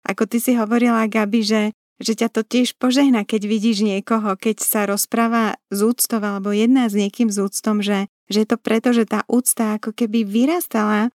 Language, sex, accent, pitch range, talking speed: Czech, female, native, 210-240 Hz, 195 wpm